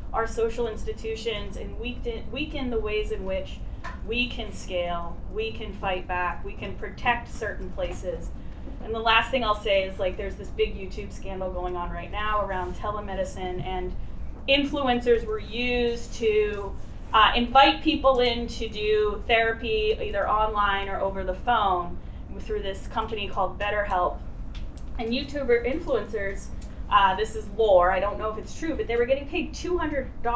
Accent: American